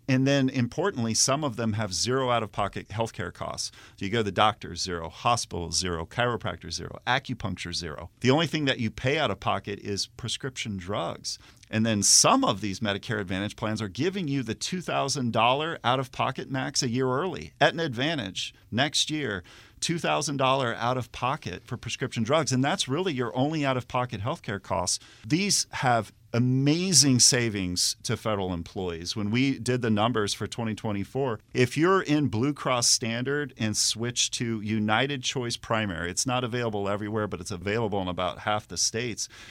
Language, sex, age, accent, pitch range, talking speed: English, male, 40-59, American, 105-130 Hz, 165 wpm